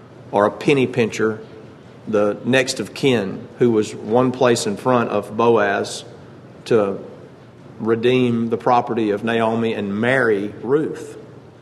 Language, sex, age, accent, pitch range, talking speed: English, male, 40-59, American, 115-130 Hz, 130 wpm